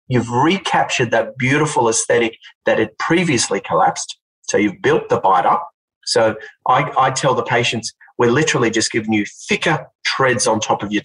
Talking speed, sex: 175 wpm, male